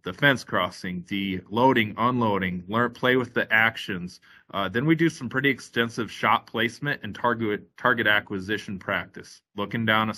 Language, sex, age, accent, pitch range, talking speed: English, male, 30-49, American, 100-120 Hz, 165 wpm